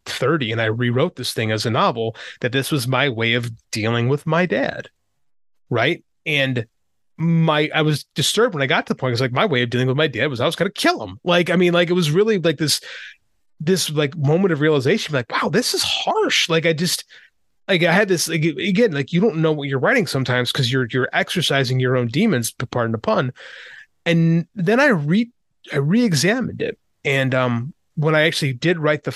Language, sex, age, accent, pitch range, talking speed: English, male, 30-49, American, 130-175 Hz, 220 wpm